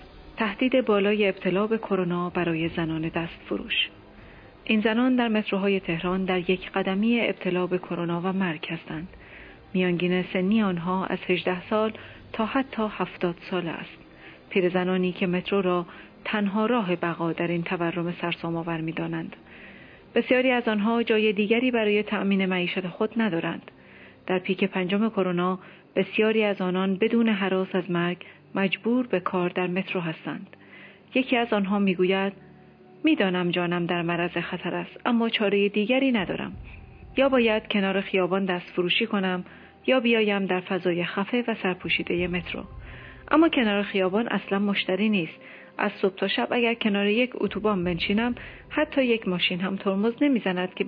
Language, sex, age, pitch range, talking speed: Persian, female, 30-49, 180-215 Hz, 145 wpm